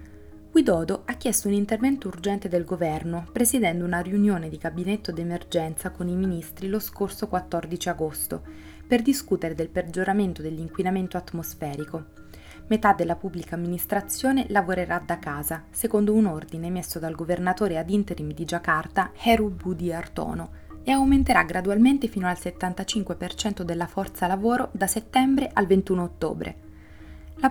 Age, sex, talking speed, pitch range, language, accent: 20-39, female, 135 wpm, 170-205 Hz, Italian, native